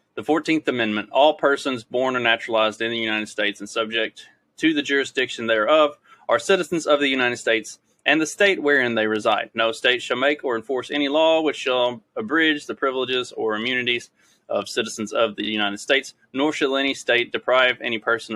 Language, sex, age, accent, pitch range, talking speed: English, male, 20-39, American, 110-145 Hz, 190 wpm